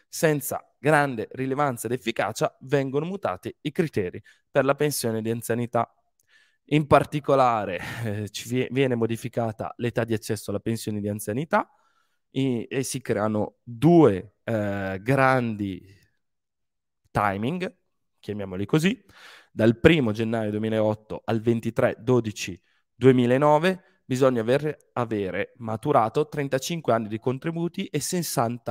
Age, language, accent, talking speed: 20-39, Italian, native, 110 wpm